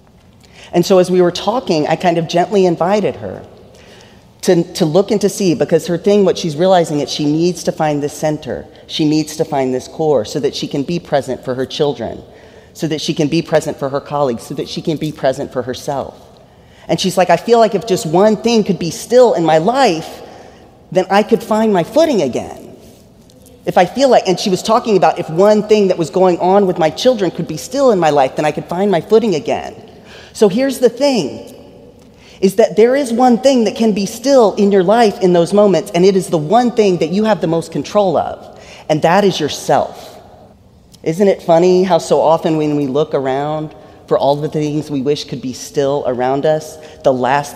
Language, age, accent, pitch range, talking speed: English, 30-49, American, 150-200 Hz, 225 wpm